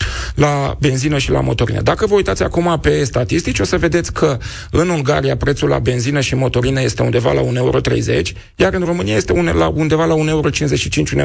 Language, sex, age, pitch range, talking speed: Romanian, male, 30-49, 120-165 Hz, 190 wpm